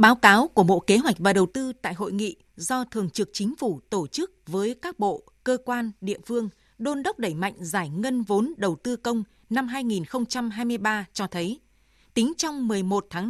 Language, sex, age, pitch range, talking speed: Vietnamese, female, 20-39, 195-245 Hz, 200 wpm